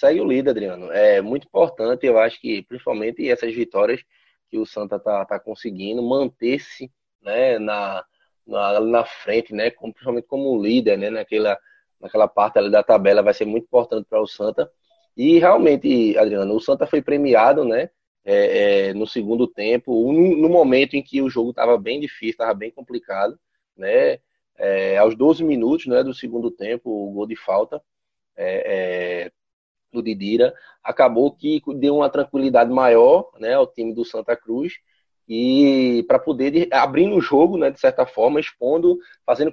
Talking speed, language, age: 170 wpm, Portuguese, 20-39